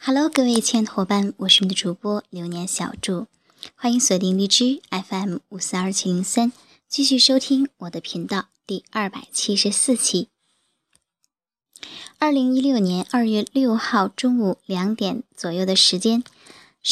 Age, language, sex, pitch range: 10-29, Chinese, male, 190-245 Hz